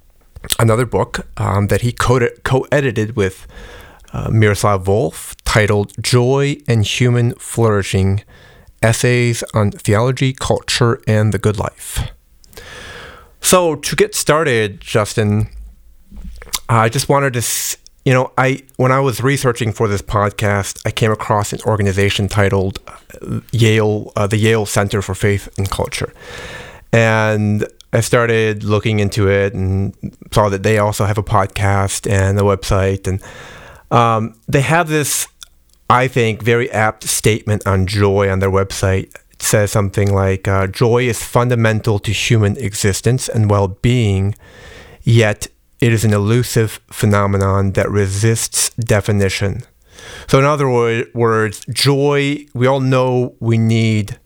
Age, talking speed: 30-49, 135 wpm